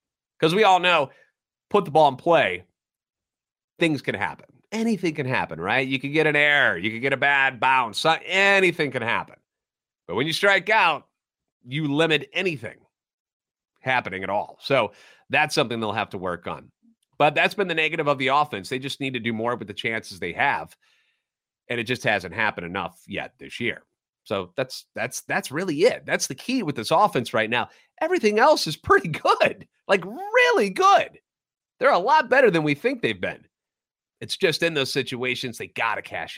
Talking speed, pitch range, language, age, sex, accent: 195 wpm, 125-165 Hz, English, 30-49, male, American